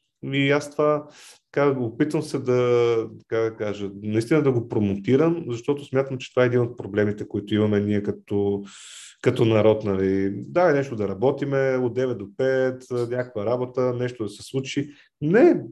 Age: 40-59